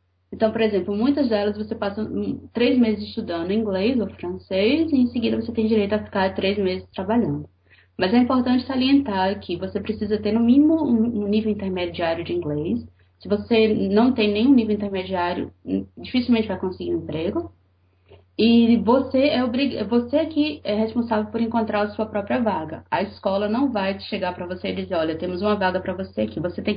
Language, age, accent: Portuguese, 20-39, Brazilian